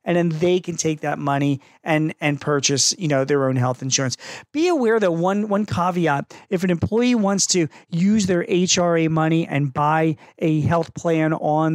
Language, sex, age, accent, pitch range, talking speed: English, male, 40-59, American, 150-195 Hz, 190 wpm